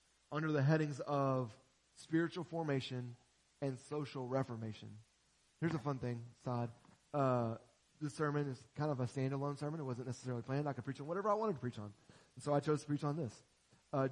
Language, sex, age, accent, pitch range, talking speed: English, male, 30-49, American, 125-155 Hz, 190 wpm